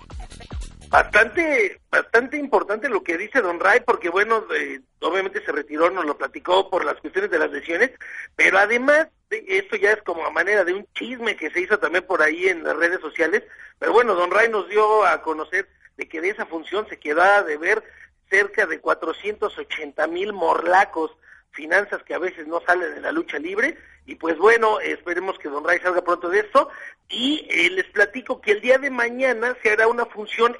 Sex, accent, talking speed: male, Mexican, 200 wpm